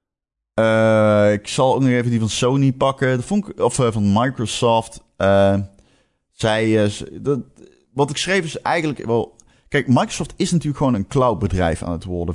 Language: Dutch